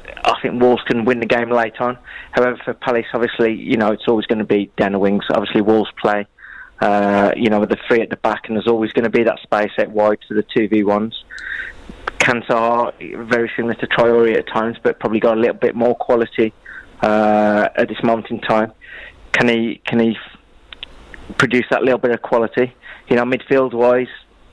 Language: English